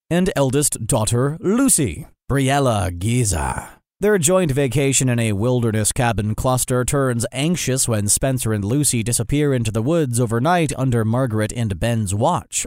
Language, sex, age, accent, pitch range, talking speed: English, male, 30-49, American, 110-145 Hz, 140 wpm